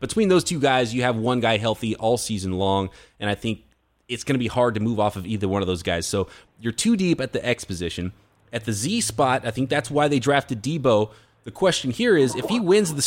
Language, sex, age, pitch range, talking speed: English, male, 20-39, 115-145 Hz, 255 wpm